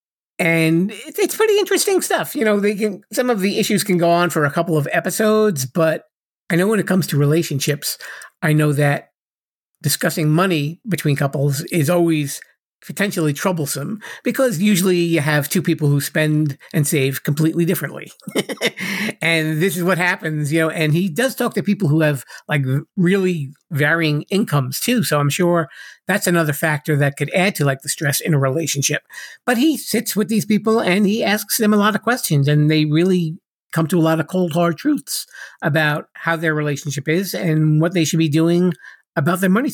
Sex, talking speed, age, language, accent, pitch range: male, 190 wpm, 50-69, English, American, 150-200 Hz